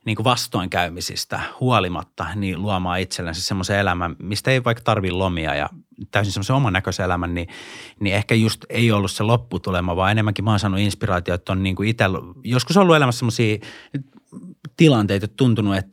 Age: 30-49